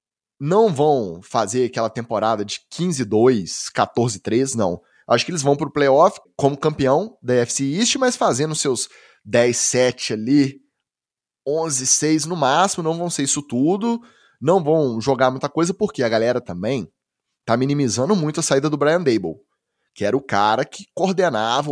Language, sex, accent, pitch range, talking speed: Portuguese, male, Brazilian, 125-170 Hz, 155 wpm